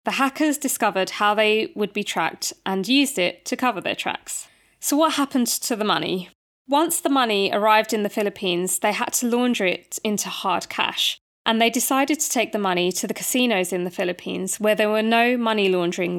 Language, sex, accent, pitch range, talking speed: English, female, British, 190-235 Hz, 205 wpm